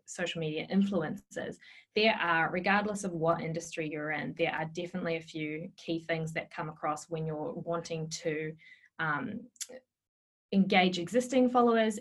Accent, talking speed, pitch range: Australian, 145 wpm, 165-200 Hz